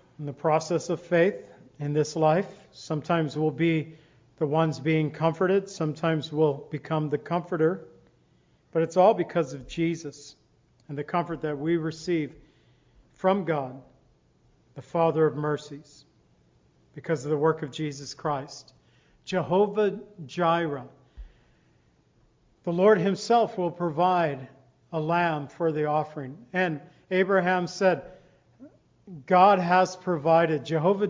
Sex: male